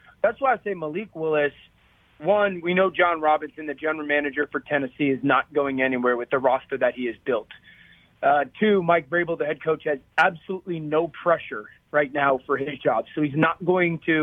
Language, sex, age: English, male, 30-49